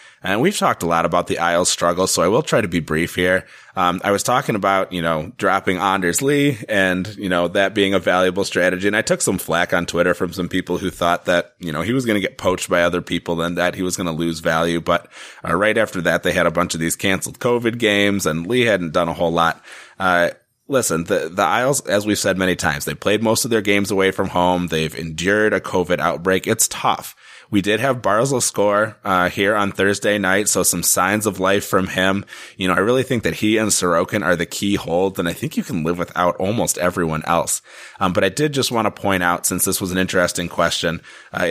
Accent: American